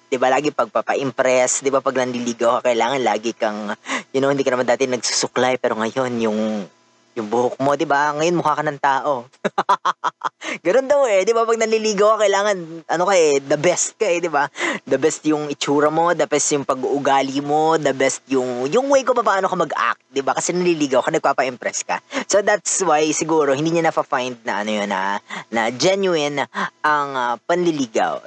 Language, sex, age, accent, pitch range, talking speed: Filipino, female, 20-39, native, 130-175 Hz, 195 wpm